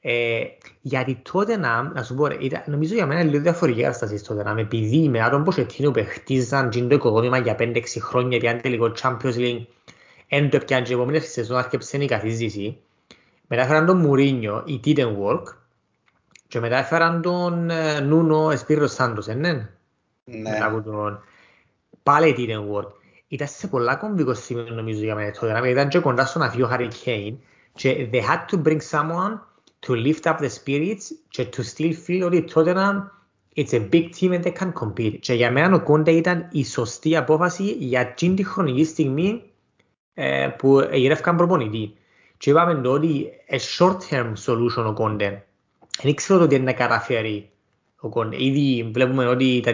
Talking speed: 75 wpm